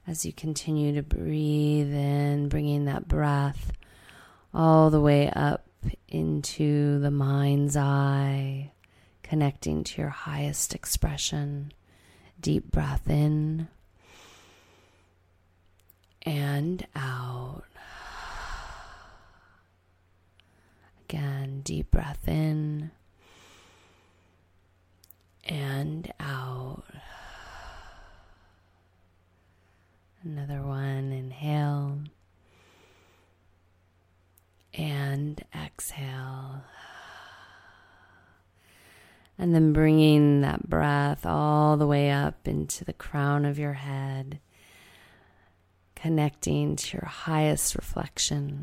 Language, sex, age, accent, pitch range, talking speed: English, female, 20-39, American, 90-145 Hz, 70 wpm